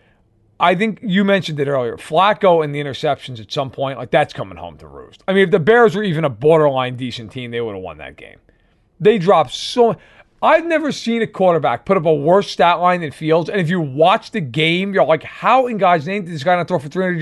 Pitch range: 140-195 Hz